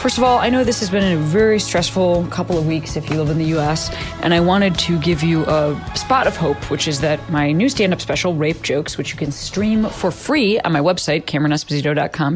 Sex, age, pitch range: female, 20-39, 150-195 Hz